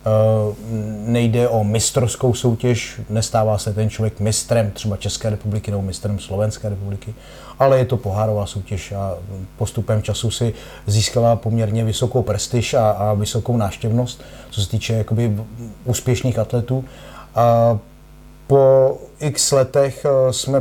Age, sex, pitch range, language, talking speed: 30-49, male, 115-130 Hz, Slovak, 130 wpm